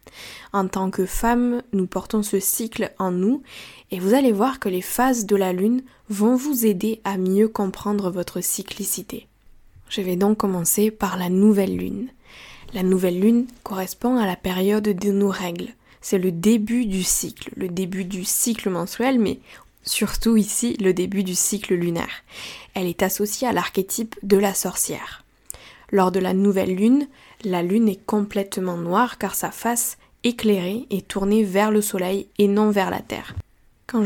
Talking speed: 170 wpm